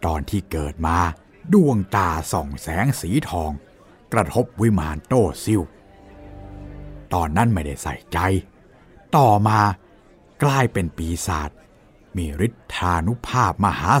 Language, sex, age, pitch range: Thai, male, 60-79, 85-130 Hz